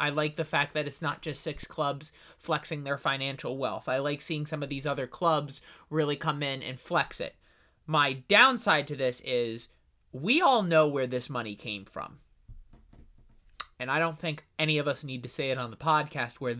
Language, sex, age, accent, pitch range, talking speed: English, male, 20-39, American, 125-155 Hz, 205 wpm